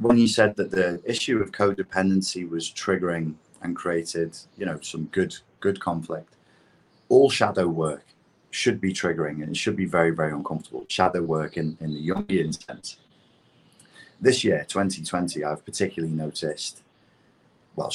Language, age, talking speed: English, 30-49, 150 wpm